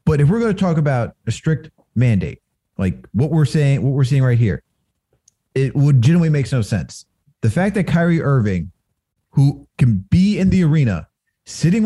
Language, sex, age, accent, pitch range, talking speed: English, male, 30-49, American, 125-170 Hz, 185 wpm